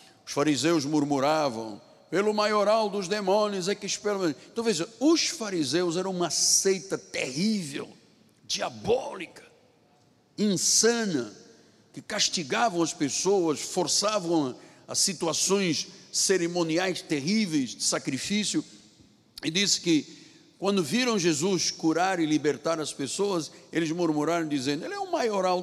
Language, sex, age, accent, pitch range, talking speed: Portuguese, male, 60-79, Brazilian, 145-205 Hz, 115 wpm